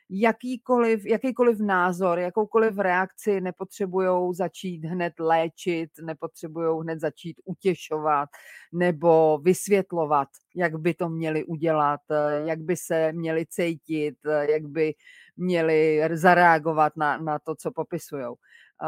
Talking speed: 110 wpm